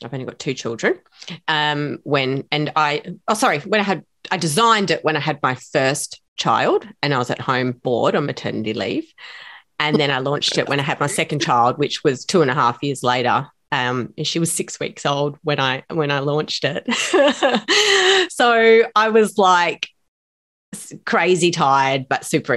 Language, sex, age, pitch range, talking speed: English, female, 30-49, 130-160 Hz, 190 wpm